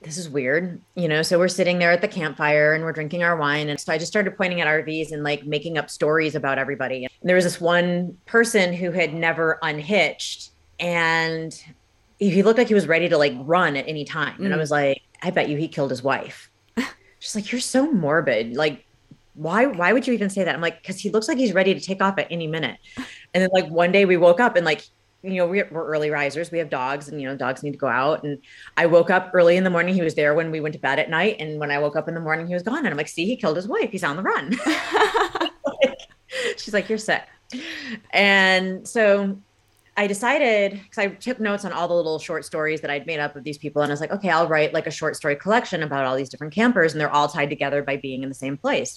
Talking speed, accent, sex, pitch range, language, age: 260 wpm, American, female, 150-195 Hz, English, 30-49